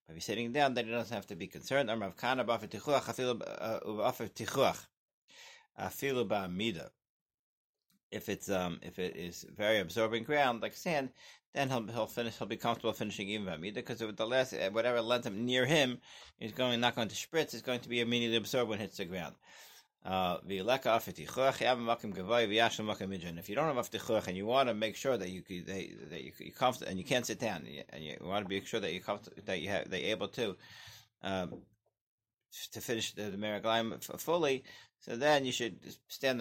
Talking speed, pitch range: 180 wpm, 100-125 Hz